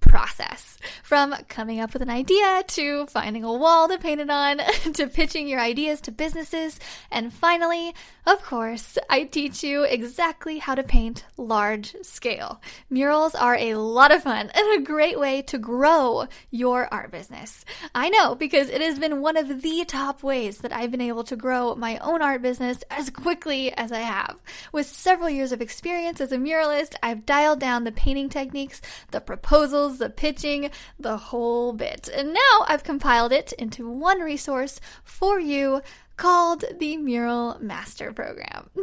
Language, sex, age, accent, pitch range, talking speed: English, female, 10-29, American, 245-320 Hz, 170 wpm